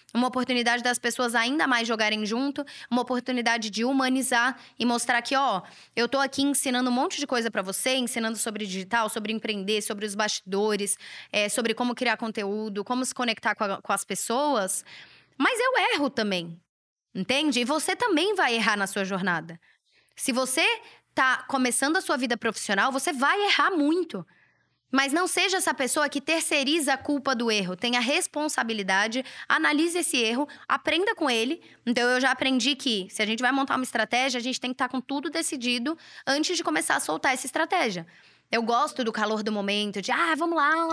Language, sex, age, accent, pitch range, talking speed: Portuguese, female, 10-29, Brazilian, 225-290 Hz, 190 wpm